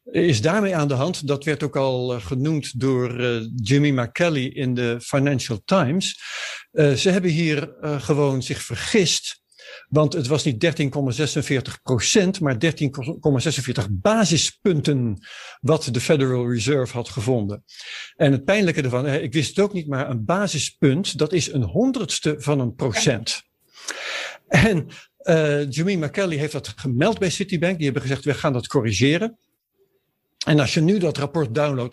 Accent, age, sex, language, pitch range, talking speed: Dutch, 60-79, male, Dutch, 135-165 Hz, 160 wpm